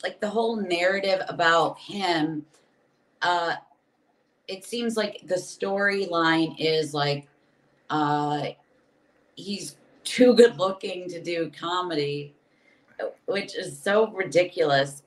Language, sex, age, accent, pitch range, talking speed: English, female, 30-49, American, 170-230 Hz, 105 wpm